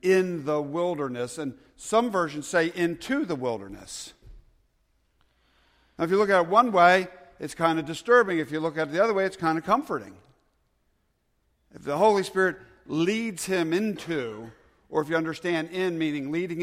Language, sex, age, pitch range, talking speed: English, male, 50-69, 105-160 Hz, 175 wpm